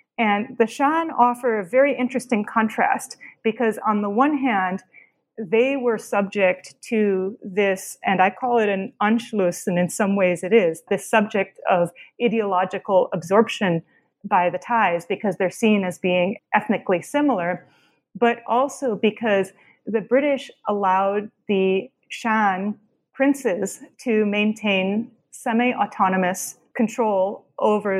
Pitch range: 190-235 Hz